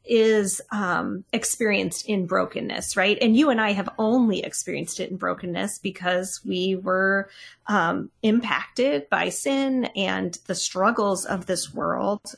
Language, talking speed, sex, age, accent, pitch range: English, 140 wpm, female, 30-49, American, 190-245 Hz